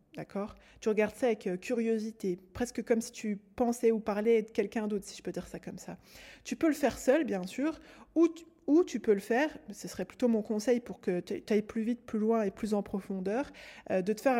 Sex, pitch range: female, 185-235 Hz